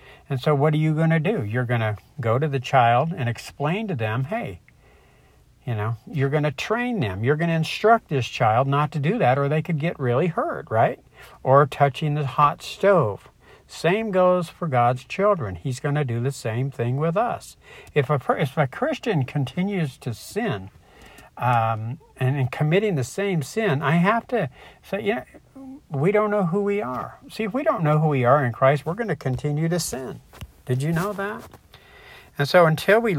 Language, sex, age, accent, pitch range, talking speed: English, male, 60-79, American, 125-175 Hz, 210 wpm